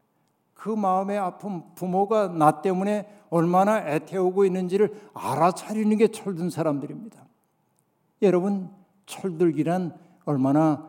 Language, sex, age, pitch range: Korean, male, 60-79, 155-195 Hz